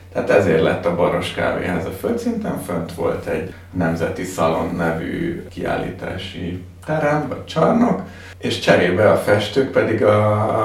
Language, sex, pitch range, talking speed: Hungarian, male, 90-100 Hz, 130 wpm